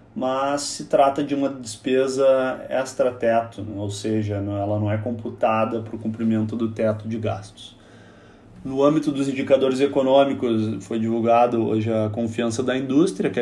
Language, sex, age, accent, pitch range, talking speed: Portuguese, male, 20-39, Brazilian, 115-130 Hz, 150 wpm